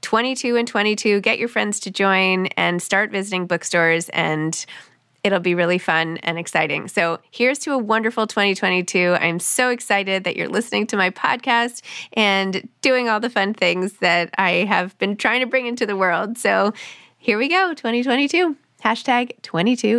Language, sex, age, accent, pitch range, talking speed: English, female, 20-39, American, 175-230 Hz, 170 wpm